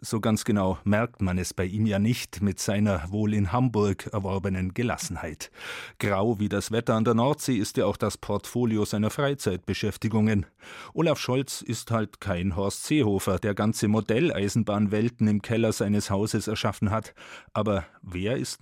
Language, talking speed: German, 160 wpm